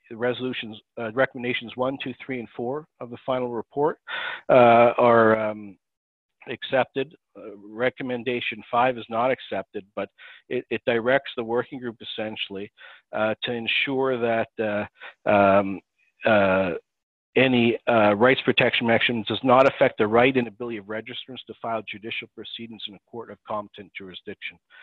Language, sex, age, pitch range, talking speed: English, male, 50-69, 105-125 Hz, 145 wpm